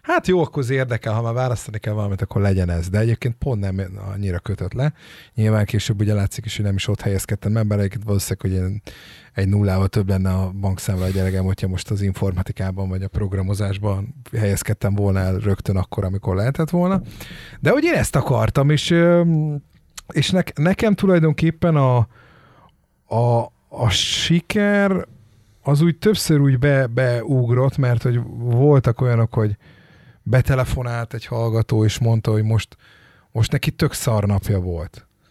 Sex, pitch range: male, 100-145 Hz